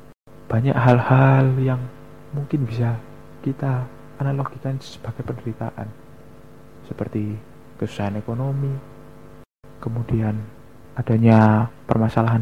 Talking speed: 70 wpm